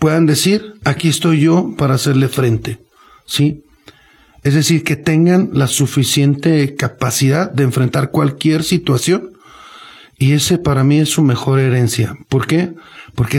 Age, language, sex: 50-69, Spanish, male